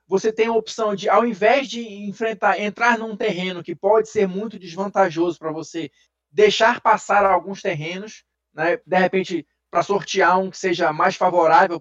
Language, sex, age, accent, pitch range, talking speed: Portuguese, male, 20-39, Brazilian, 180-225 Hz, 170 wpm